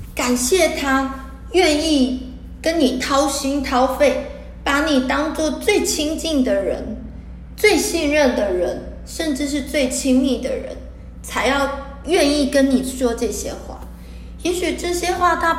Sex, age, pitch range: female, 20-39, 240-290 Hz